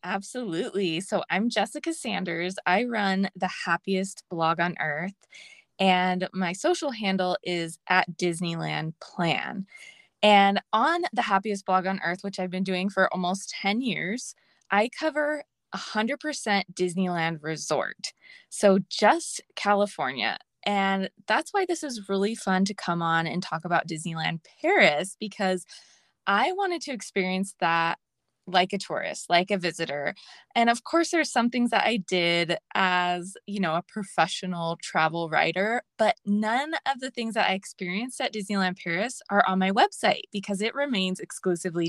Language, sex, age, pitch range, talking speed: English, female, 20-39, 180-235 Hz, 150 wpm